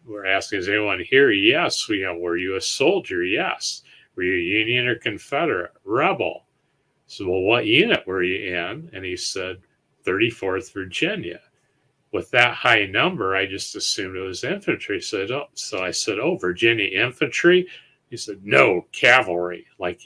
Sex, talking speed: male, 170 wpm